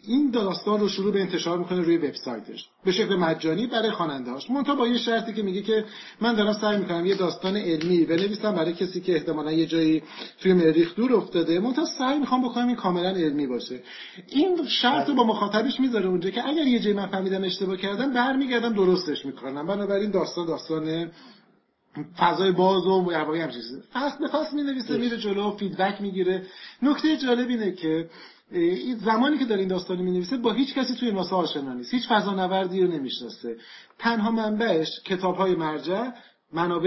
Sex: male